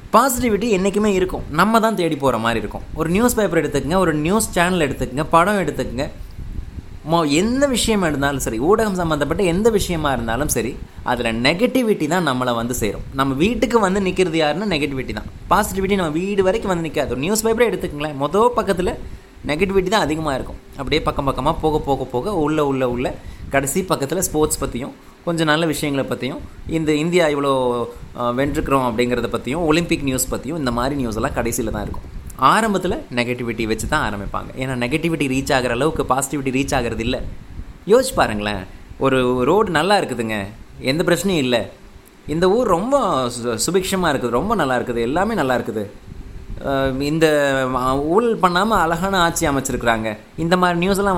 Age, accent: 20-39, native